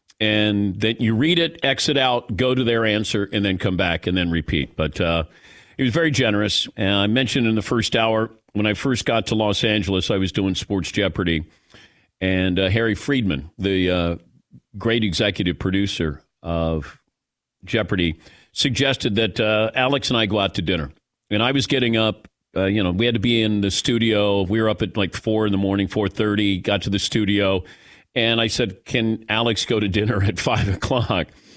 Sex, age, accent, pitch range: male, 50-69, American, 95-120 Hz